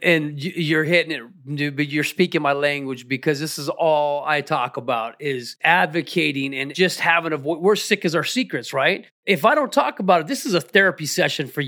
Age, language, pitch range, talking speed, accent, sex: 30-49, English, 155-205 Hz, 215 wpm, American, male